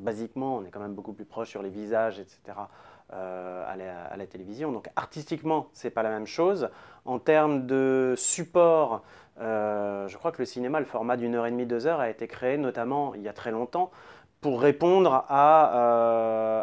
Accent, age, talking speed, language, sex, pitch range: French, 30-49, 205 wpm, French, male, 115-150 Hz